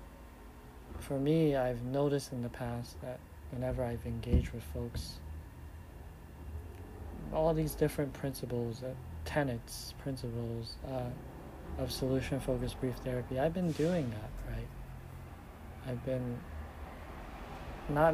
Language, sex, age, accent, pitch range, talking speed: English, male, 40-59, American, 80-130 Hz, 110 wpm